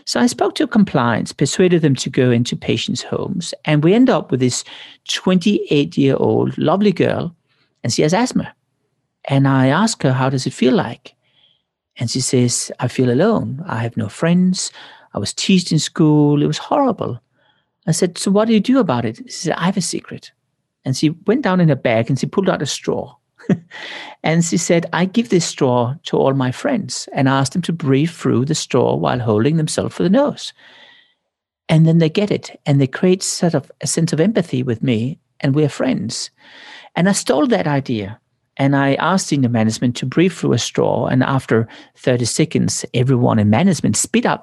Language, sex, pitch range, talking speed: English, male, 130-180 Hz, 205 wpm